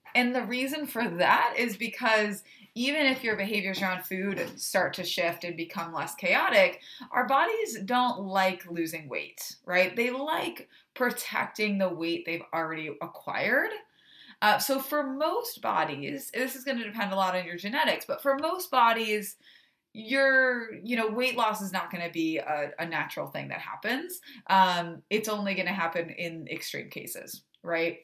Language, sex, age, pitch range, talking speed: English, female, 20-39, 175-255 Hz, 175 wpm